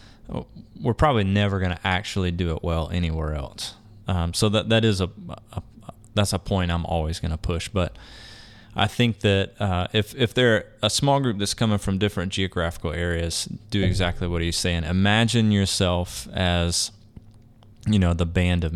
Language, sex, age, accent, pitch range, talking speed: English, male, 20-39, American, 90-110 Hz, 180 wpm